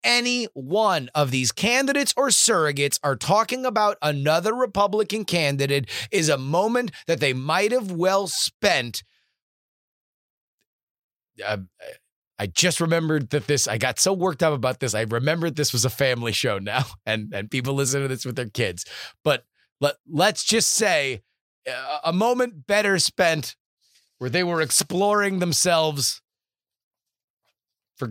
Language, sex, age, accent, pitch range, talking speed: English, male, 30-49, American, 140-220 Hz, 140 wpm